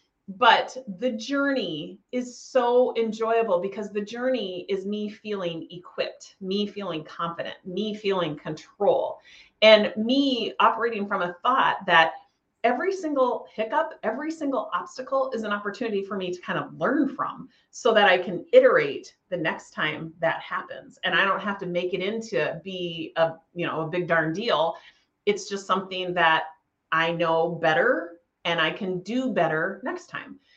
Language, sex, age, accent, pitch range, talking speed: English, female, 30-49, American, 180-250 Hz, 155 wpm